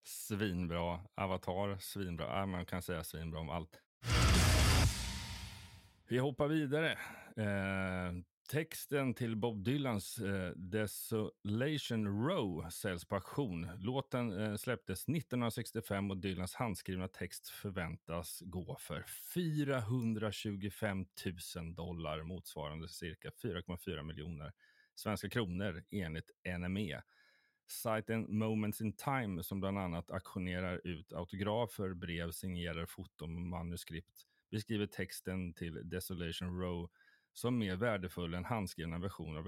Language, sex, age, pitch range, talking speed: Swedish, male, 30-49, 85-105 Hz, 110 wpm